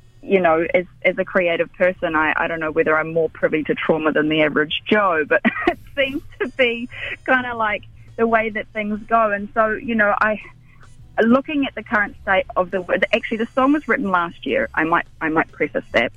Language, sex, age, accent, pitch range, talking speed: English, female, 20-39, Australian, 160-210 Hz, 220 wpm